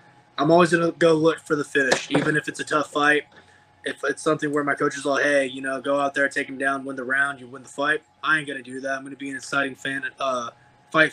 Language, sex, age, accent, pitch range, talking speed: English, male, 20-39, American, 135-150 Hz, 285 wpm